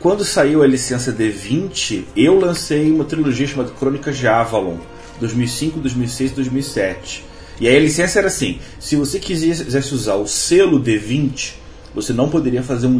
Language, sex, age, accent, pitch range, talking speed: Portuguese, male, 30-49, Brazilian, 125-160 Hz, 155 wpm